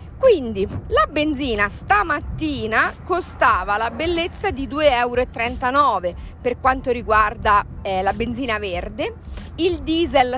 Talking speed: 110 wpm